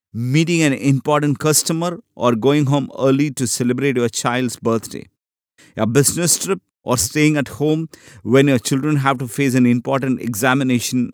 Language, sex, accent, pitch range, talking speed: English, male, Indian, 120-145 Hz, 155 wpm